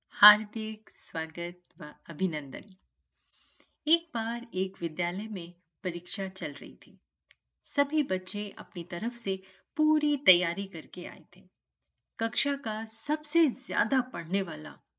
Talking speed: 115 wpm